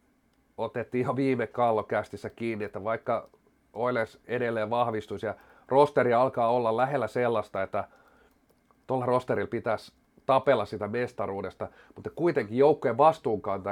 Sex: male